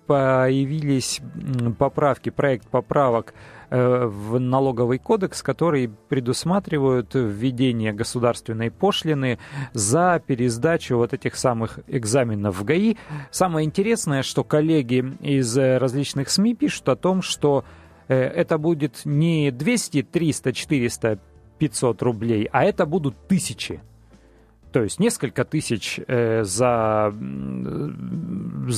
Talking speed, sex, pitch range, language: 105 wpm, male, 115-155 Hz, Russian